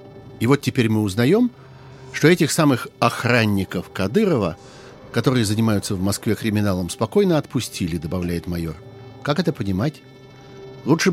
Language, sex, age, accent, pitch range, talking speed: Russian, male, 50-69, native, 110-155 Hz, 125 wpm